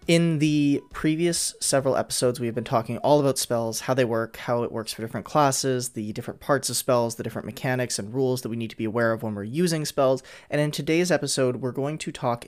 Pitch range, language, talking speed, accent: 110-130 Hz, English, 240 wpm, American